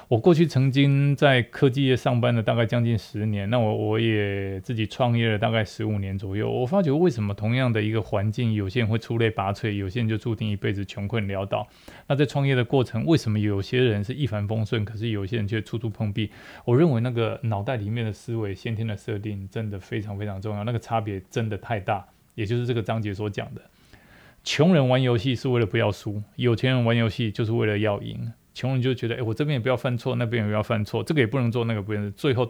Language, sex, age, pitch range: Chinese, male, 20-39, 105-125 Hz